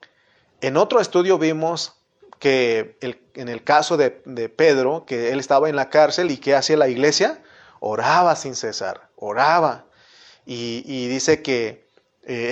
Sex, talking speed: male, 150 wpm